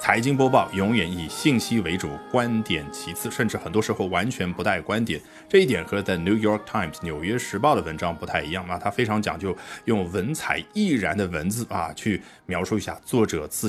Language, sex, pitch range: Chinese, male, 95-140 Hz